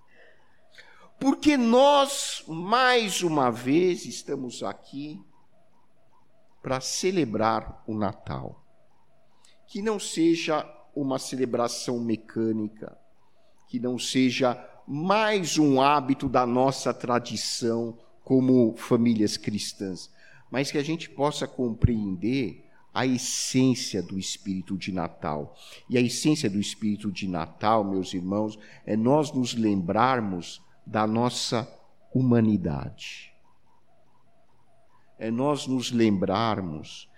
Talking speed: 100 wpm